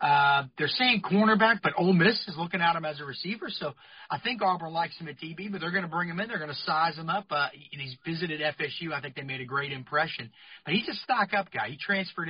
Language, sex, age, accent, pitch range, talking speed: English, male, 30-49, American, 145-185 Hz, 260 wpm